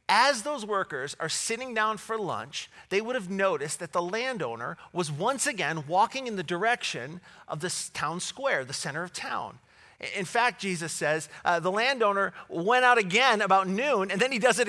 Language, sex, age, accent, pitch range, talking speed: English, male, 40-59, American, 175-225 Hz, 190 wpm